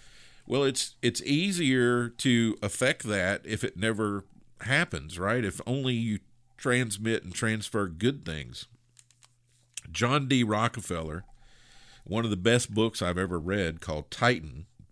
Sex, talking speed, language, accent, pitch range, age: male, 135 wpm, English, American, 95-120 Hz, 50-69